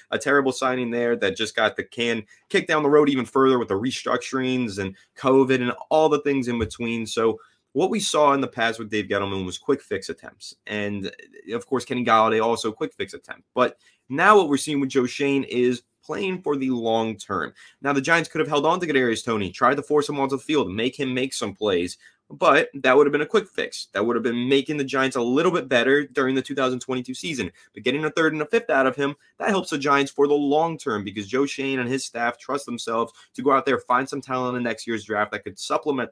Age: 20-39